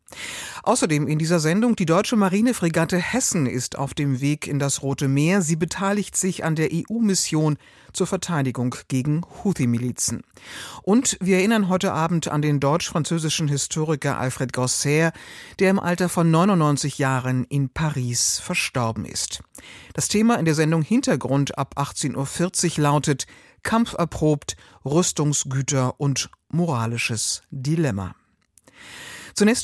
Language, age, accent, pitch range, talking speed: German, 50-69, German, 140-175 Hz, 130 wpm